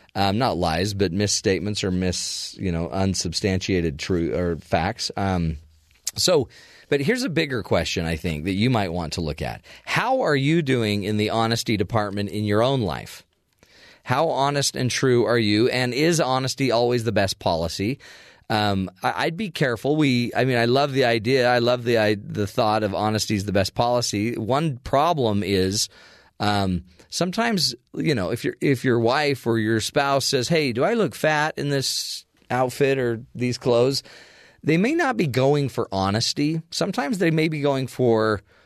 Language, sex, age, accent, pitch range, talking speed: English, male, 30-49, American, 105-140 Hz, 180 wpm